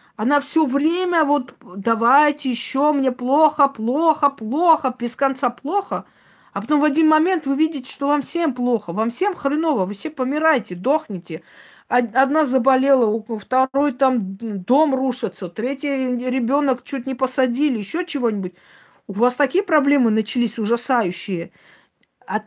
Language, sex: Russian, female